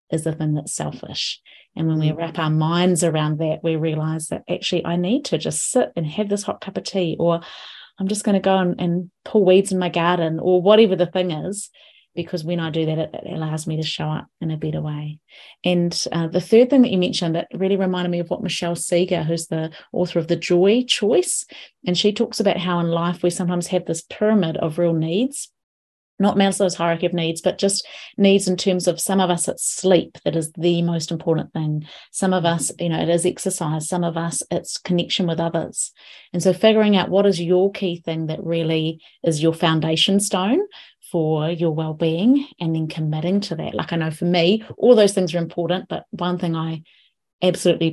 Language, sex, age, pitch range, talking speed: English, female, 30-49, 165-190 Hz, 220 wpm